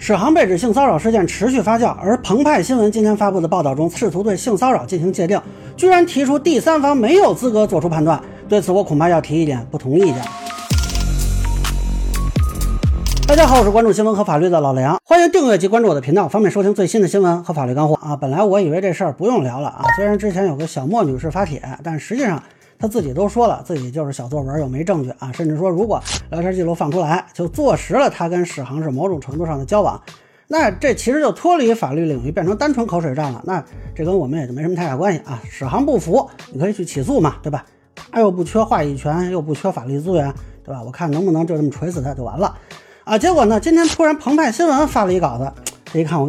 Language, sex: Chinese, male